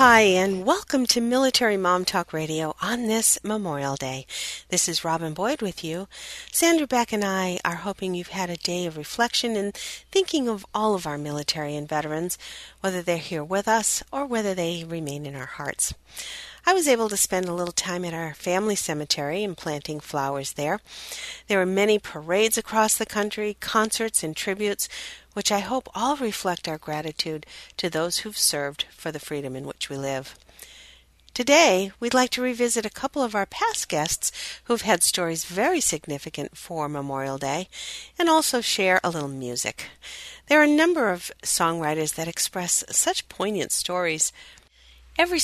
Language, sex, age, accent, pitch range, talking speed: English, female, 40-59, American, 160-225 Hz, 175 wpm